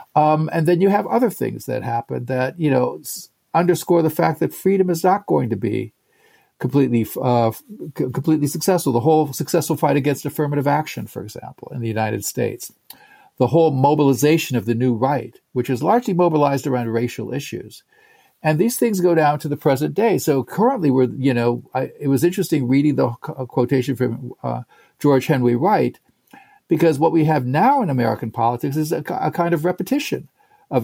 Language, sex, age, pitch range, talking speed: English, male, 50-69, 125-165 Hz, 190 wpm